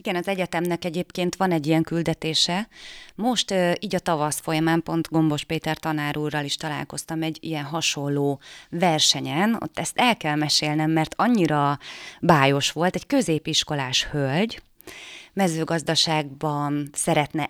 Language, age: Hungarian, 30-49